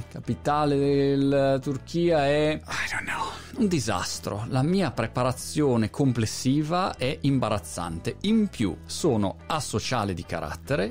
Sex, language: male, Italian